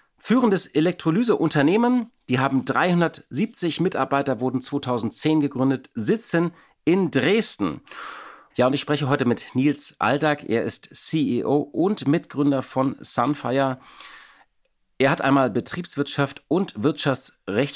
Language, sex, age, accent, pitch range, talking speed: German, male, 40-59, German, 130-165 Hz, 110 wpm